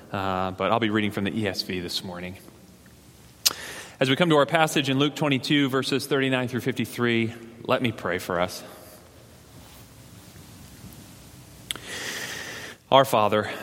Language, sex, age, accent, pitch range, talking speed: English, male, 30-49, American, 95-115 Hz, 130 wpm